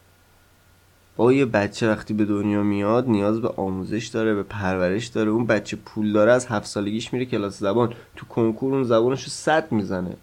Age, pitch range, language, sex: 20-39, 105-135 Hz, Persian, male